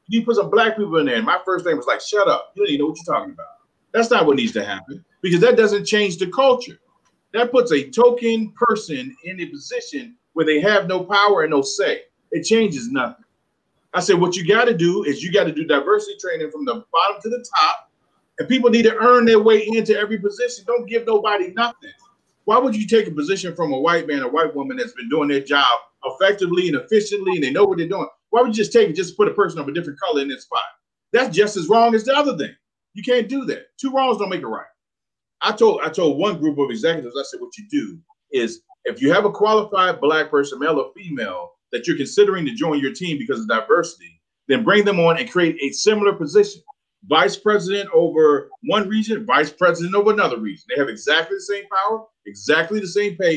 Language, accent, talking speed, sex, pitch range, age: English, American, 240 wpm, male, 180-250 Hz, 30-49